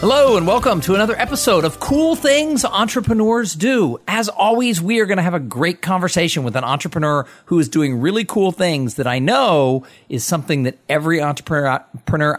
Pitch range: 120-180 Hz